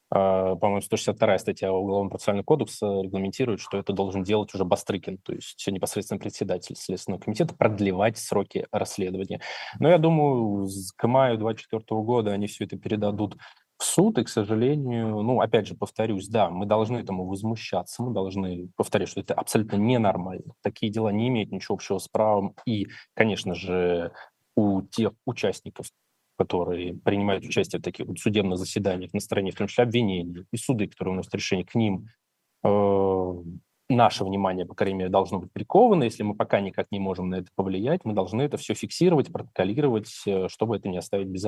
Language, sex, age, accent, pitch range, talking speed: Russian, male, 20-39, native, 95-115 Hz, 170 wpm